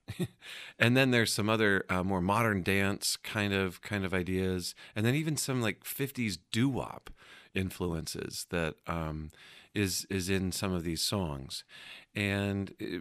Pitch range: 90-120 Hz